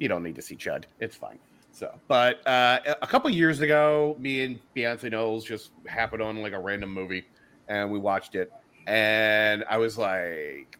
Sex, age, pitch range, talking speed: male, 30-49, 125-200 Hz, 190 wpm